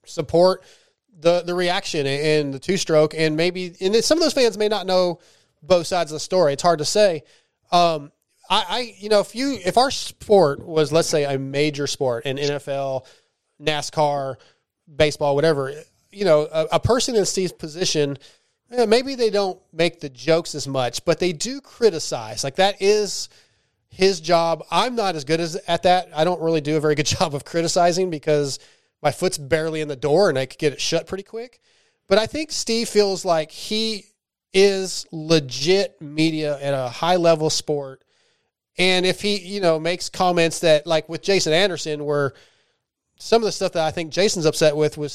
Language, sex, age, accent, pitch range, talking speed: English, male, 30-49, American, 150-190 Hz, 190 wpm